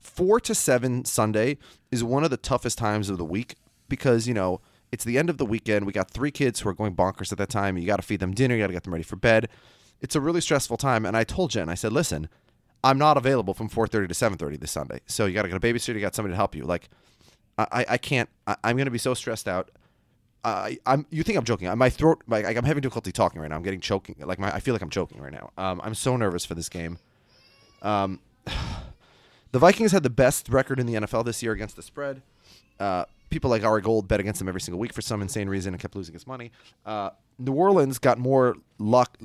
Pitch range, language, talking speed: 100-130 Hz, English, 260 wpm